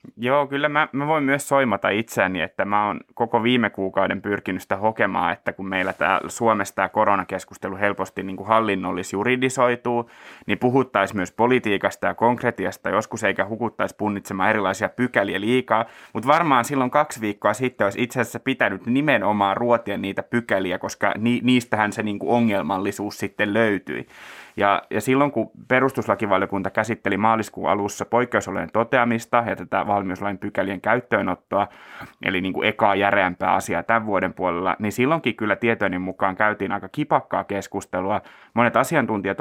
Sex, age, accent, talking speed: male, 20-39, native, 150 wpm